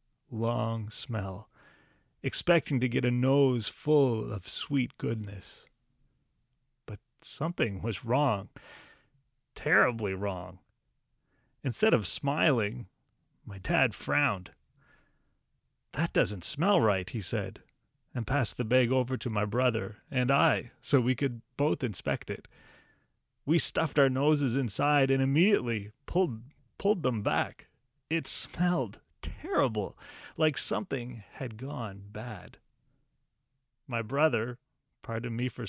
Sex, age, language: male, 40-59, English